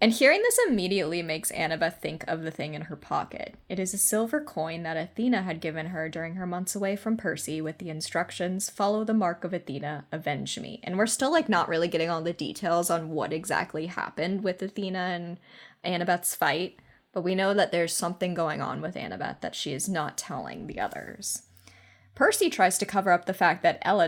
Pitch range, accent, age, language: 165-210 Hz, American, 10-29, English